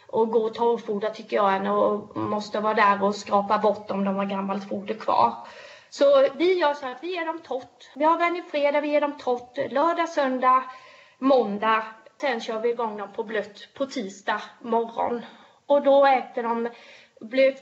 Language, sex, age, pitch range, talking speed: Swedish, female, 20-39, 220-270 Hz, 190 wpm